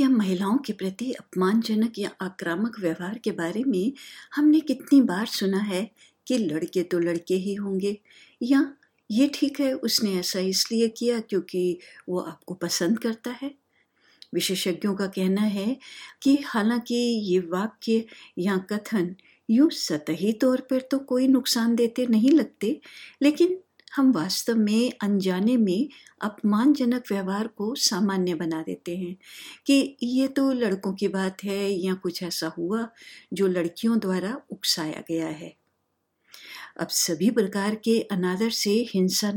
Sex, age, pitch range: female, 50-69, 185-250 Hz